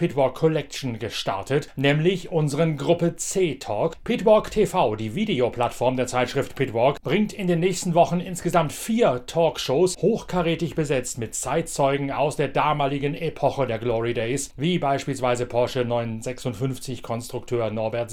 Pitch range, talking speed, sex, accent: 130-170 Hz, 130 wpm, male, German